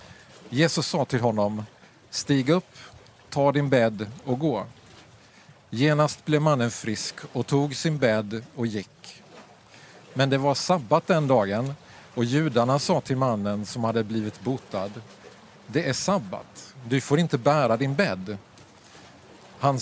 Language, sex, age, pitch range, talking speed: Swedish, male, 50-69, 120-155 Hz, 140 wpm